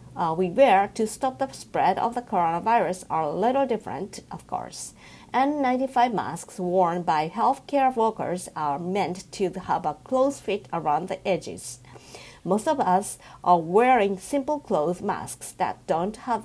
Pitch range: 180-245 Hz